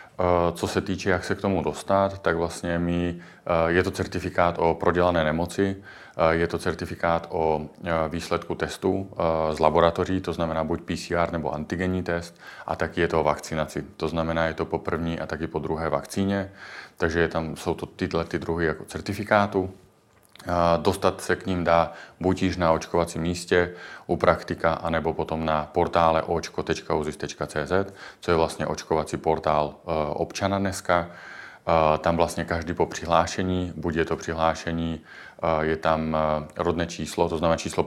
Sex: male